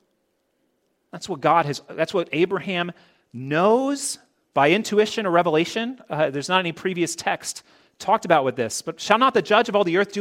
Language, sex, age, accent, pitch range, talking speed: English, male, 30-49, American, 135-205 Hz, 190 wpm